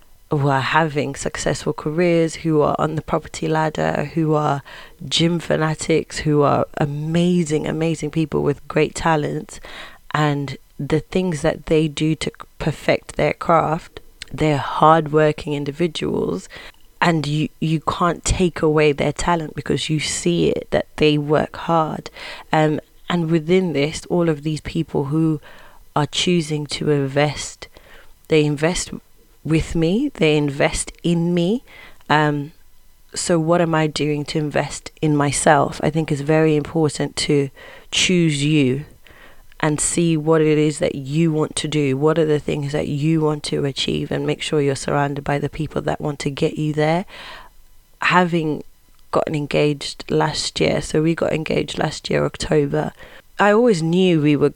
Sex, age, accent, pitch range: female, 20-39, British, 145-160 Hz